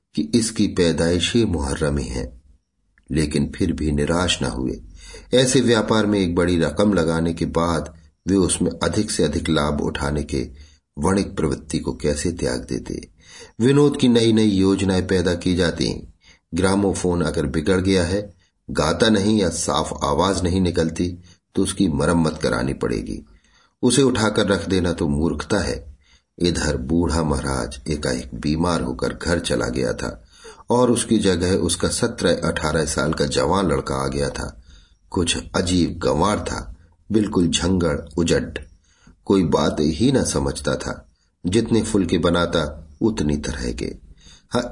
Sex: male